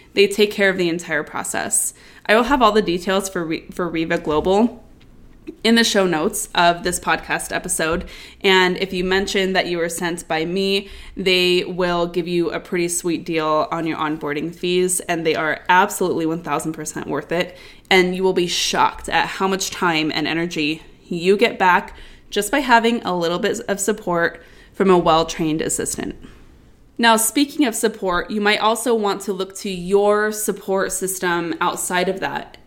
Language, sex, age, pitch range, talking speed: English, female, 20-39, 170-200 Hz, 180 wpm